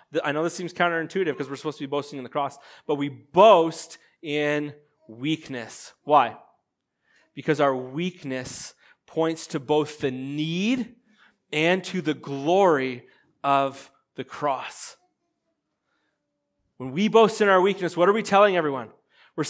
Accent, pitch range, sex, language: American, 130-190 Hz, male, English